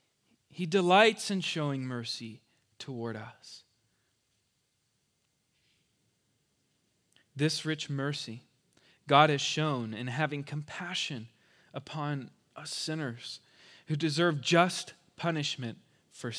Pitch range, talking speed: 120-150 Hz, 90 wpm